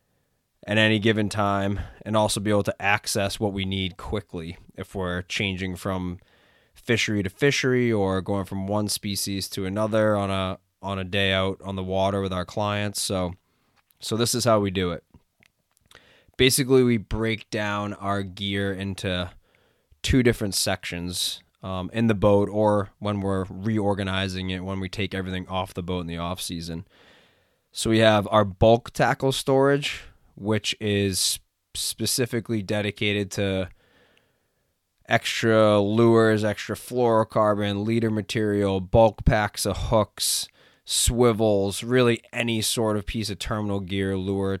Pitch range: 95-110 Hz